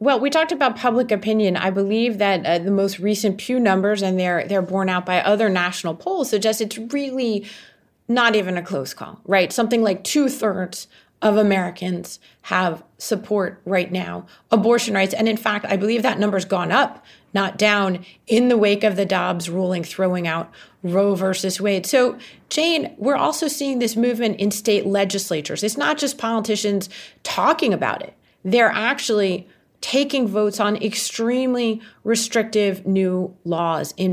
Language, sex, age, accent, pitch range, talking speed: English, female, 30-49, American, 190-230 Hz, 165 wpm